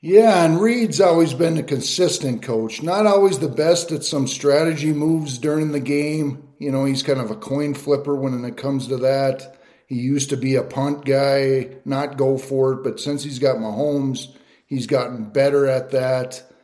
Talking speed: 190 wpm